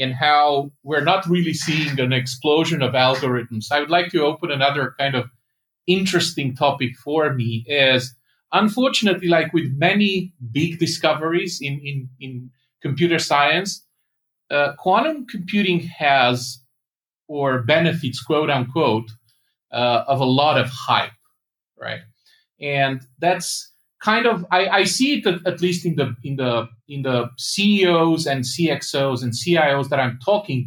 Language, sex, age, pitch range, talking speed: English, male, 40-59, 130-175 Hz, 140 wpm